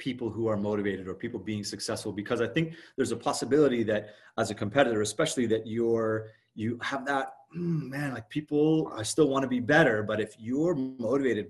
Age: 30-49